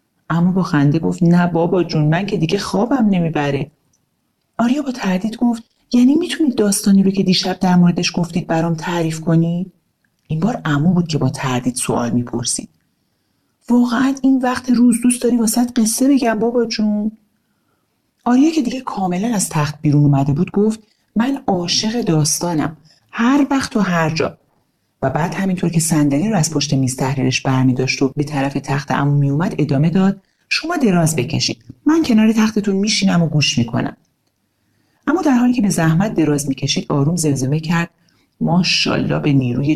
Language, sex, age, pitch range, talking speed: Persian, male, 40-59, 145-215 Hz, 165 wpm